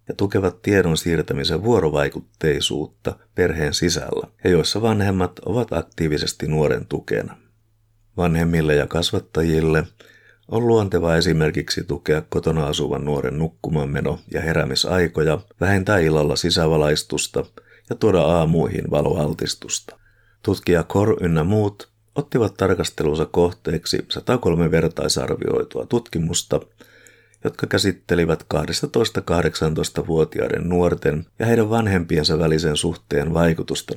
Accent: native